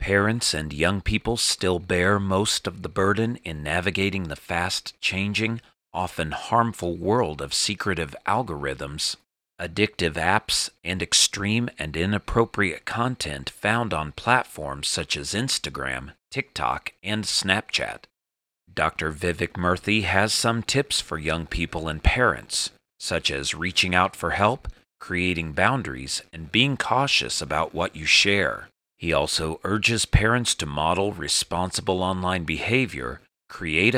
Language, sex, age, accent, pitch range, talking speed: English, male, 40-59, American, 80-110 Hz, 125 wpm